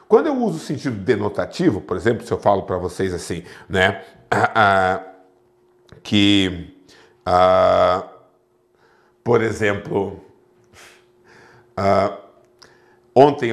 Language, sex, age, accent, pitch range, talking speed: Portuguese, male, 50-69, Brazilian, 125-210 Hz, 100 wpm